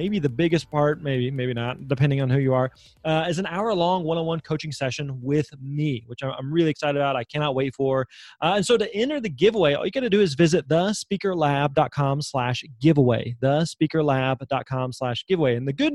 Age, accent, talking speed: 30-49, American, 200 wpm